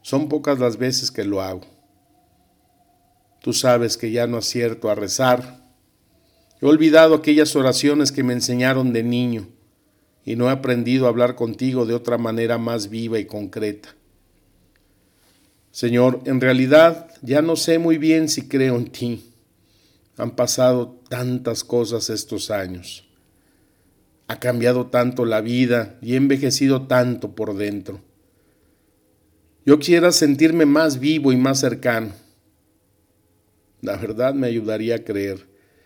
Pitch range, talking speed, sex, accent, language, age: 105-130 Hz, 135 wpm, male, Mexican, Spanish, 50-69